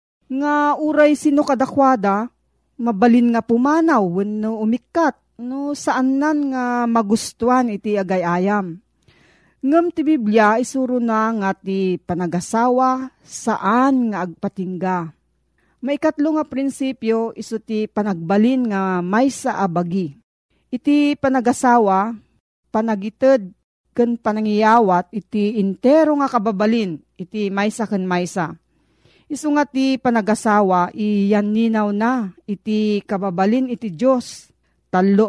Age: 40-59